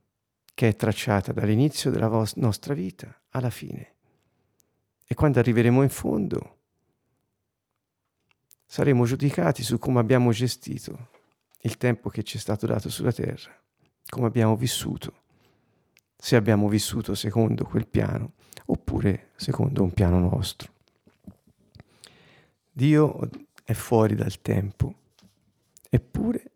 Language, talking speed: Italian, 110 wpm